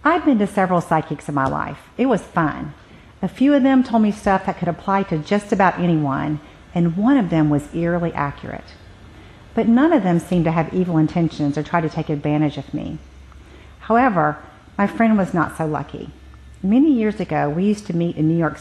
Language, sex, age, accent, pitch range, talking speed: English, female, 50-69, American, 150-200 Hz, 210 wpm